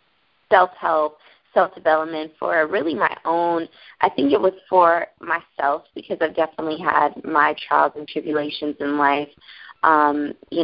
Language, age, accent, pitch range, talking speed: English, 20-39, American, 155-185 Hz, 135 wpm